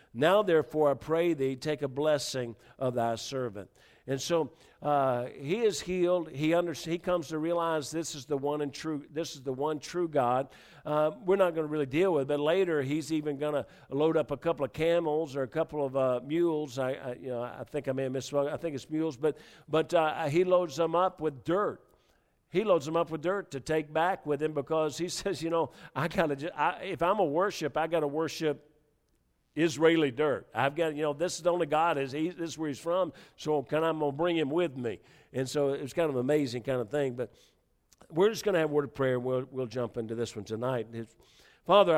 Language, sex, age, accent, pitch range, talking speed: English, male, 50-69, American, 130-160 Hz, 235 wpm